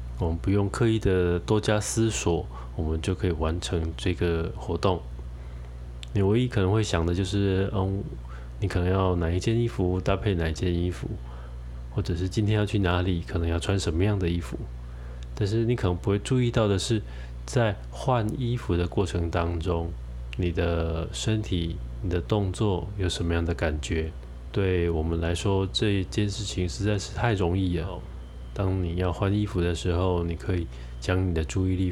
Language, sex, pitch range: Chinese, male, 70-100 Hz